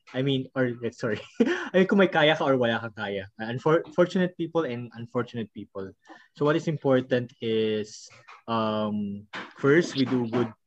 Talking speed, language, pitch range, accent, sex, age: 180 wpm, English, 120-150 Hz, Filipino, male, 20-39